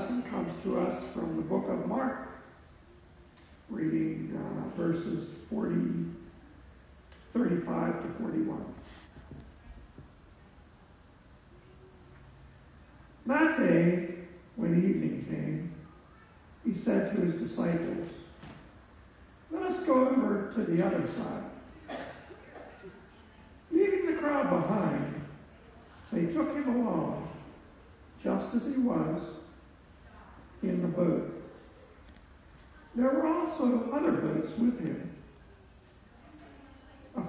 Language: English